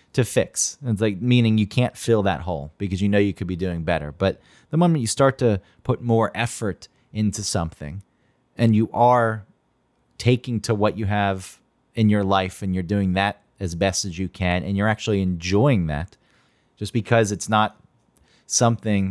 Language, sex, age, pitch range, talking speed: English, male, 30-49, 95-115 Hz, 185 wpm